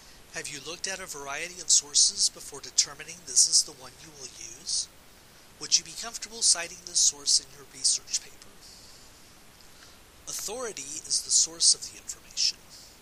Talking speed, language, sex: 160 wpm, English, male